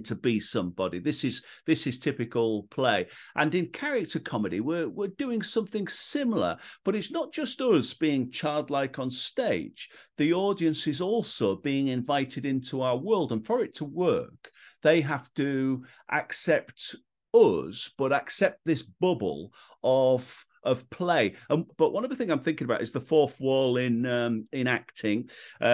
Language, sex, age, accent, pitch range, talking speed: English, male, 50-69, British, 110-160 Hz, 165 wpm